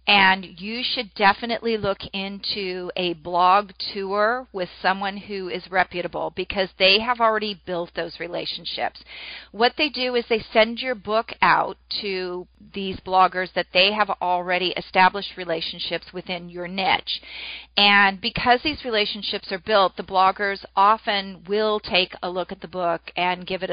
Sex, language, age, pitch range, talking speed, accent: female, English, 40-59, 185-230 Hz, 155 wpm, American